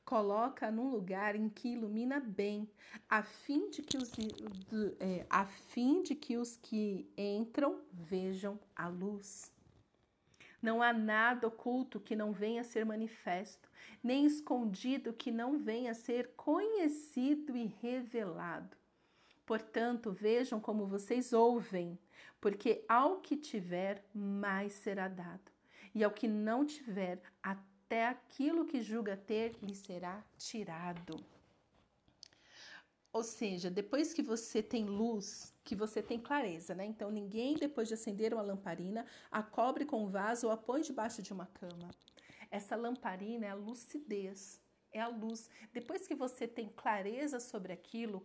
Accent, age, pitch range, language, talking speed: Brazilian, 50-69, 205-245 Hz, Portuguese, 135 wpm